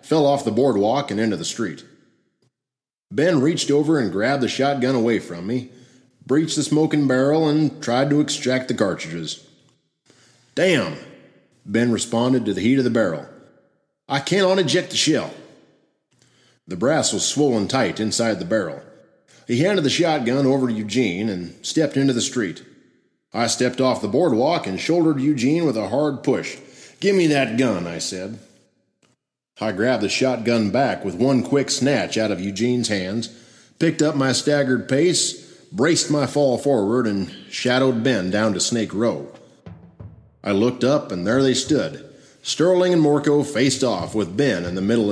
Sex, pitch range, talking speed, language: male, 110-140 Hz, 170 wpm, English